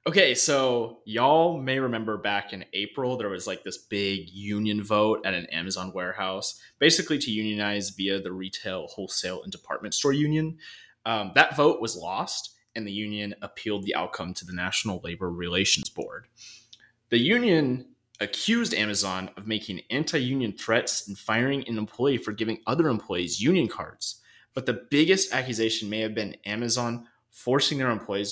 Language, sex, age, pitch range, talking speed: English, male, 20-39, 105-135 Hz, 165 wpm